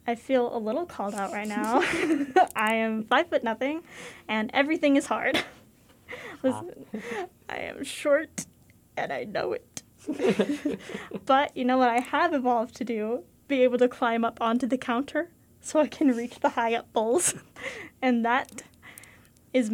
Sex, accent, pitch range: female, American, 220-270 Hz